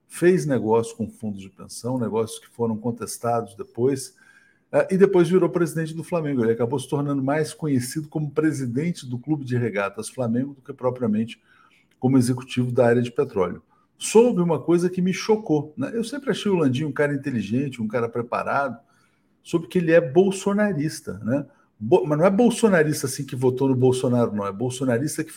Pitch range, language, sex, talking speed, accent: 120-155 Hz, Portuguese, male, 180 wpm, Brazilian